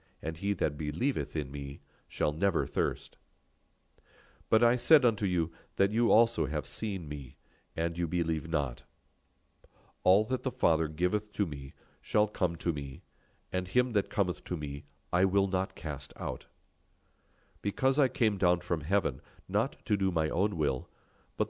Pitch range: 75-100 Hz